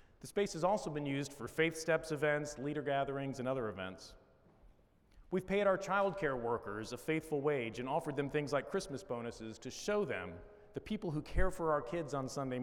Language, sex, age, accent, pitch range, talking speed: English, male, 40-59, American, 125-165 Hz, 200 wpm